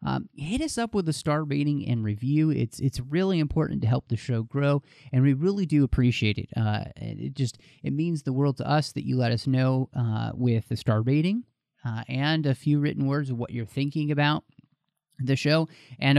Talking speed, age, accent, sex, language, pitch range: 215 wpm, 30-49, American, male, English, 120-145 Hz